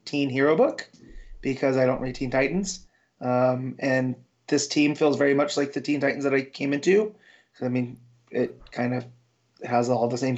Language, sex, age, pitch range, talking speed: English, male, 30-49, 130-165 Hz, 195 wpm